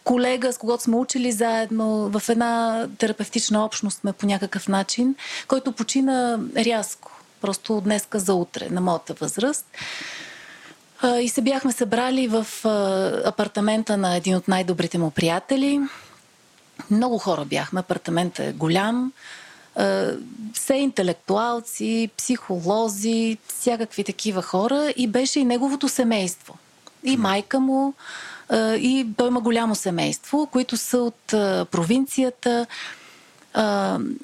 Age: 30-49